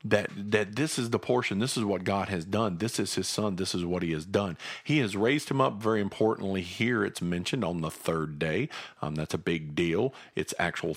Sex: male